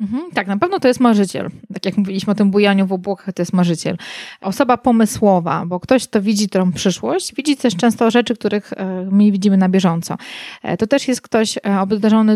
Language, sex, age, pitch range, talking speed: Polish, female, 20-39, 195-225 Hz, 190 wpm